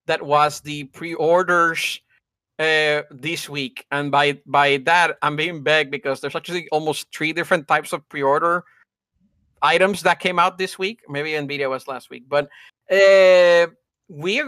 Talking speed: 160 wpm